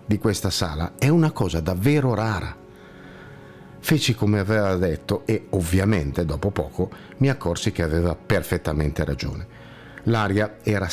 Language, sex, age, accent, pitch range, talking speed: Italian, male, 50-69, native, 90-130 Hz, 130 wpm